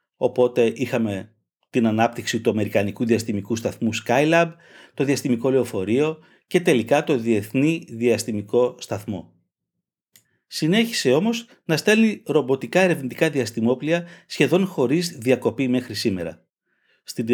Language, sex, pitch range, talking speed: Greek, male, 120-160 Hz, 105 wpm